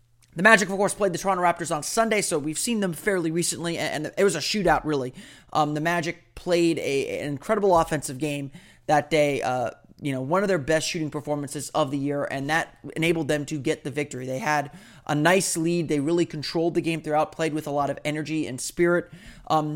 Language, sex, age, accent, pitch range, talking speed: English, male, 30-49, American, 145-175 Hz, 220 wpm